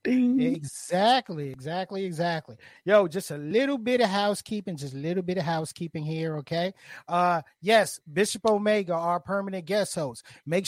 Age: 30-49